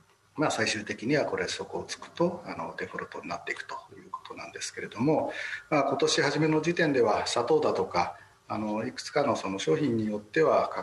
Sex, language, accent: male, Japanese, native